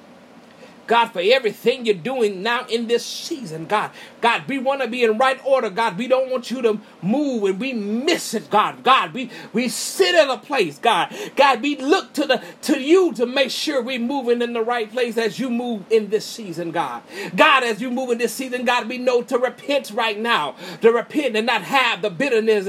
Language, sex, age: English, male, 30-49